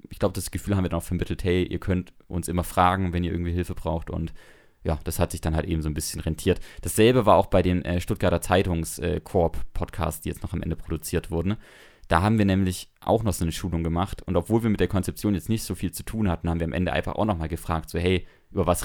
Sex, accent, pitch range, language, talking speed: male, German, 80-95 Hz, English, 265 wpm